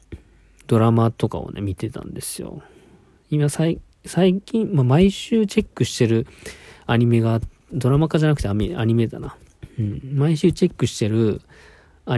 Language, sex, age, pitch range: Japanese, male, 40-59, 100-135 Hz